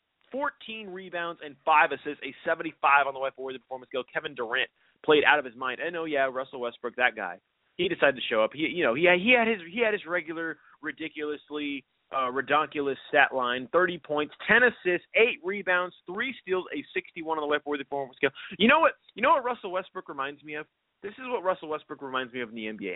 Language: English